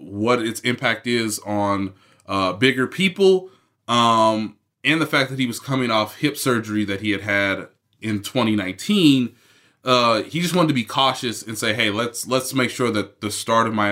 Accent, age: American, 20-39